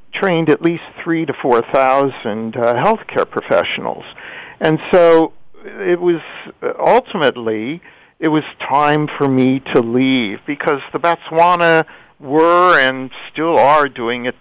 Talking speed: 125 wpm